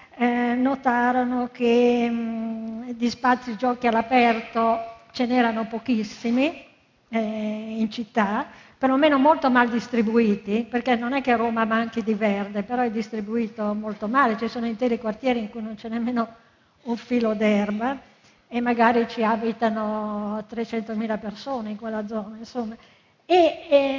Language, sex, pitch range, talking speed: Italian, female, 220-260 Hz, 145 wpm